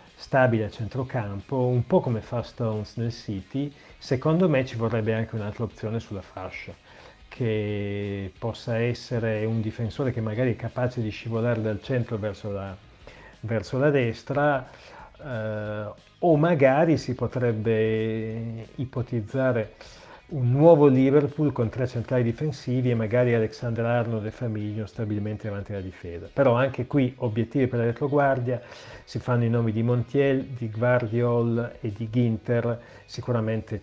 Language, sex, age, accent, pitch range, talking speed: Italian, male, 40-59, native, 105-125 Hz, 140 wpm